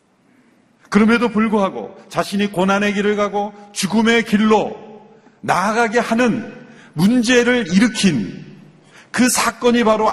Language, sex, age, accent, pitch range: Korean, male, 40-59, native, 170-220 Hz